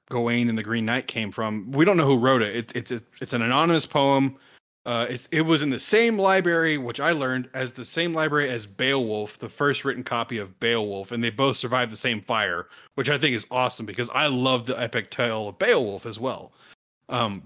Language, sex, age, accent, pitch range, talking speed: English, male, 30-49, American, 115-145 Hz, 225 wpm